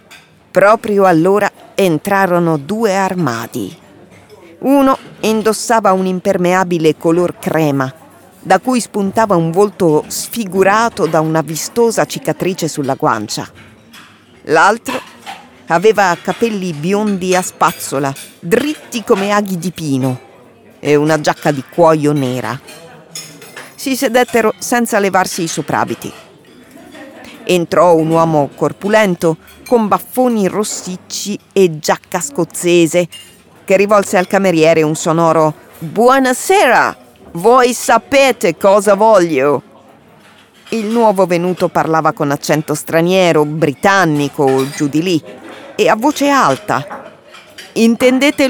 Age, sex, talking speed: 40-59, female, 105 wpm